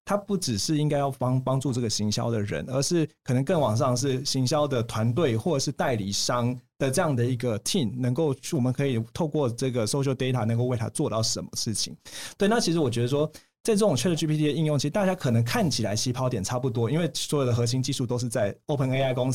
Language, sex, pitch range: Chinese, male, 120-150 Hz